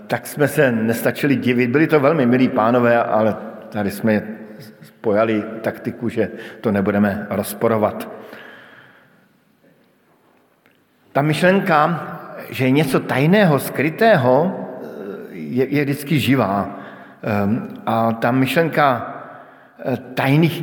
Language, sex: Slovak, male